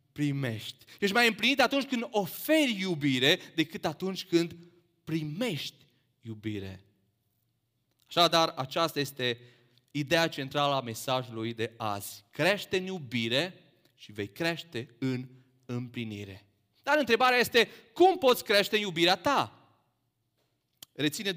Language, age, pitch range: Romanian, 30-49, 120-185 Hz